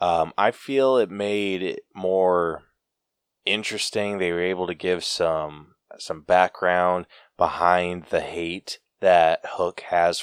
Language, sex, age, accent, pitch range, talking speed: English, male, 20-39, American, 85-110 Hz, 130 wpm